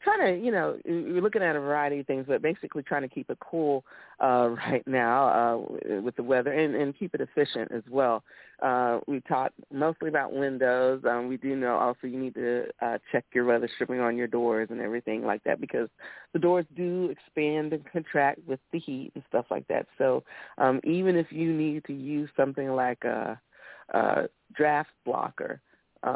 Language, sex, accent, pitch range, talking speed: English, female, American, 120-145 Hz, 200 wpm